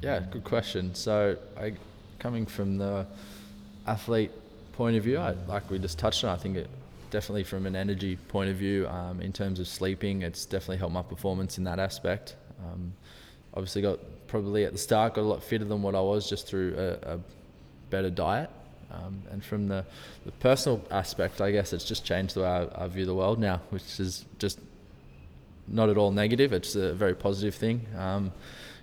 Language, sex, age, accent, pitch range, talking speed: English, male, 20-39, Australian, 95-105 Hz, 195 wpm